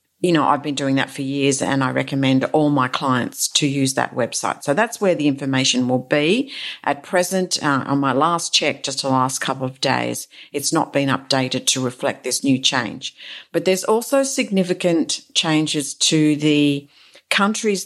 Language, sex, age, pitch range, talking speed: English, female, 50-69, 140-165 Hz, 185 wpm